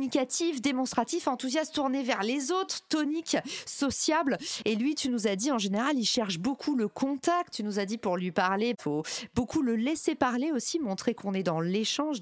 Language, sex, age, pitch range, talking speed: French, female, 40-59, 210-285 Hz, 200 wpm